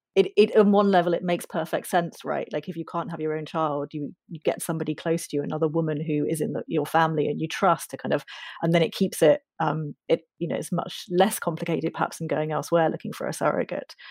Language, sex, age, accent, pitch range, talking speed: English, female, 30-49, British, 165-210 Hz, 255 wpm